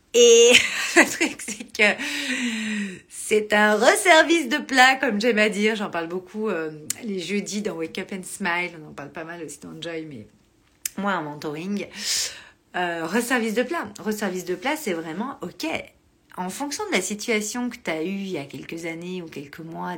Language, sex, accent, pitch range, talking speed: French, female, French, 165-230 Hz, 220 wpm